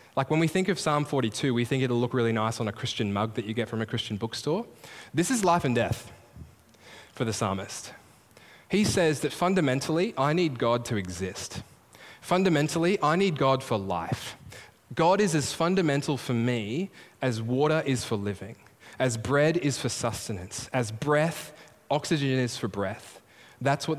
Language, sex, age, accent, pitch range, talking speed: English, male, 10-29, Australian, 110-150 Hz, 180 wpm